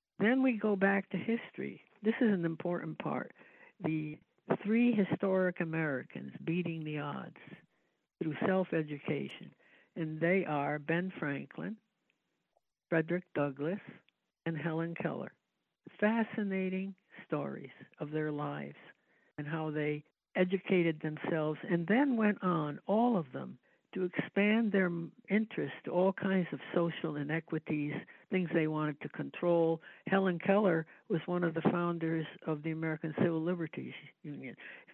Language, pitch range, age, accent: English, 160-195 Hz, 60-79, American